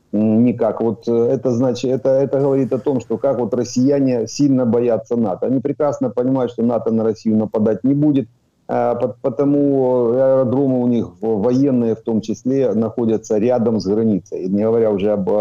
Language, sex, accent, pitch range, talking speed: Ukrainian, male, native, 105-125 Hz, 170 wpm